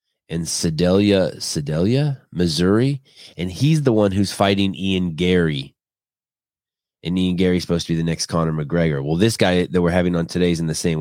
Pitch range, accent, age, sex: 85-105 Hz, American, 20-39, male